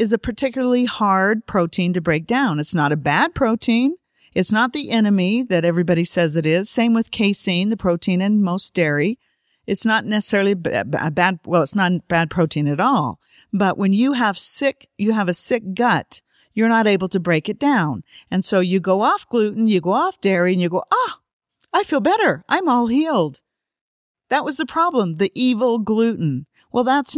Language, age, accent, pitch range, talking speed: English, 50-69, American, 180-255 Hz, 195 wpm